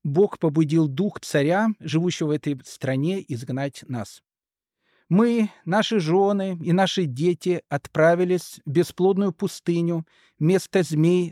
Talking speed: 115 wpm